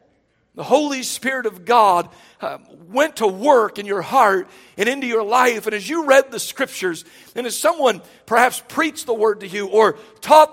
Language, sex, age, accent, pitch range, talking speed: English, male, 50-69, American, 225-305 Hz, 190 wpm